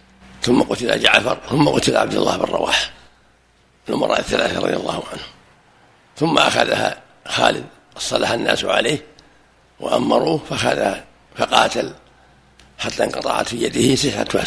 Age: 60-79